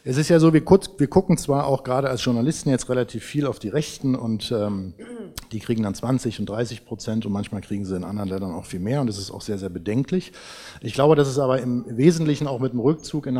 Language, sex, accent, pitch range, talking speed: German, male, German, 115-145 Hz, 245 wpm